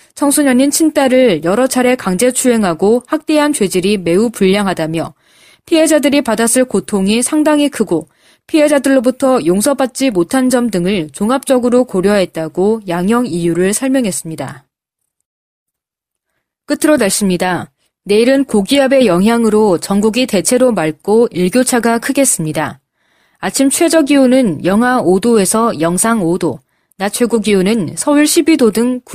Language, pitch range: Korean, 180-260 Hz